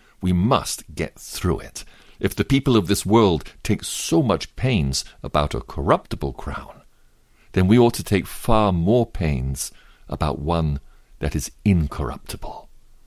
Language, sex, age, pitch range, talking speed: English, male, 50-69, 75-105 Hz, 145 wpm